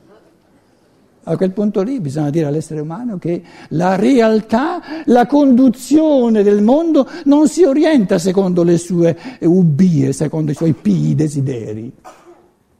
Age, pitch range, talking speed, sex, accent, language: 60-79, 155-250 Hz, 120 wpm, male, native, Italian